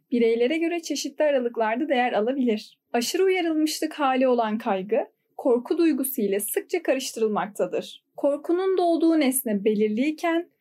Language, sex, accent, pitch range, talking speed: Turkish, female, native, 225-310 Hz, 115 wpm